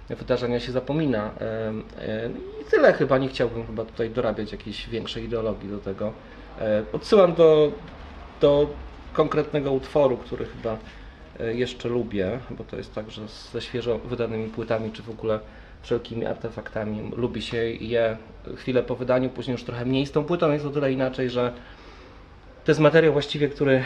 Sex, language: male, Polish